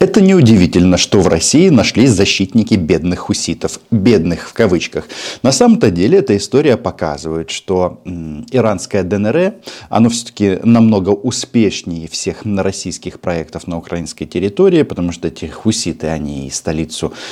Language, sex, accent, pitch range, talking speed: Russian, male, native, 90-115 Hz, 130 wpm